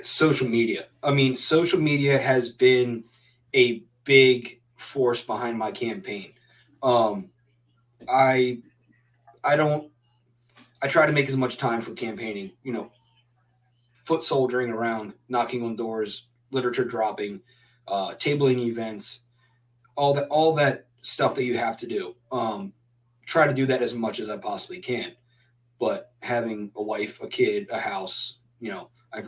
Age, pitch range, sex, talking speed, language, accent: 30-49, 120-135 Hz, male, 150 wpm, English, American